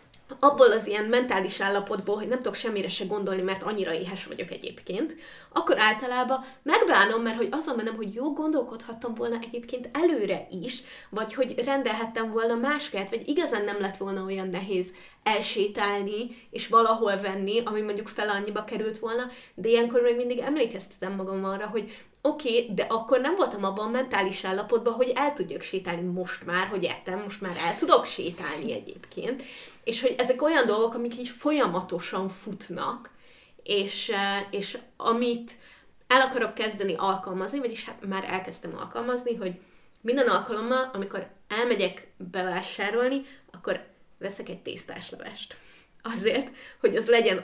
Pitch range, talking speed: 195-250 Hz, 150 wpm